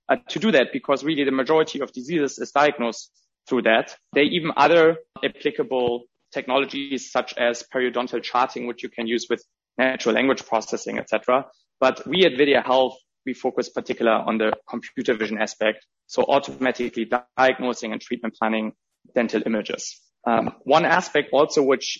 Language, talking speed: English, 160 wpm